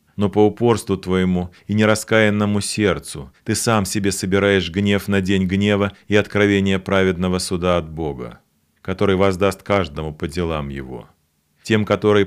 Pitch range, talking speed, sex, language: 90-105 Hz, 140 wpm, male, Russian